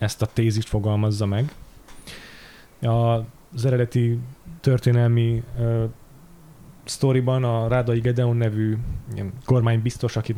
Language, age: Hungarian, 20-39